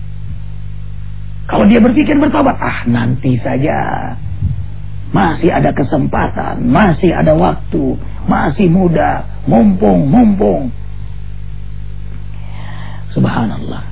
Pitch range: 105-130 Hz